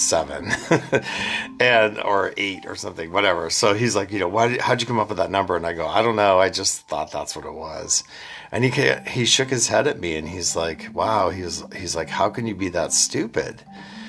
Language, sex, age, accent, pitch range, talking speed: English, male, 50-69, American, 75-110 Hz, 240 wpm